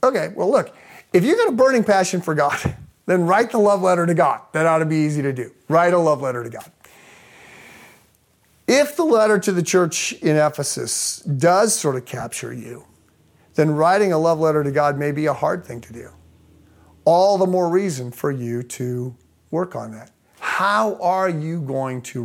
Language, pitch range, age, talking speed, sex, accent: English, 130-165 Hz, 50-69, 195 wpm, male, American